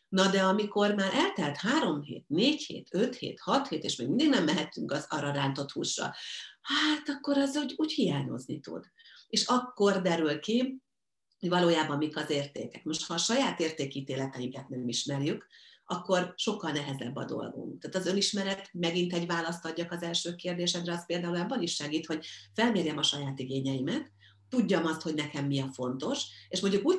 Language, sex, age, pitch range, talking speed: Hungarian, female, 50-69, 140-195 Hz, 180 wpm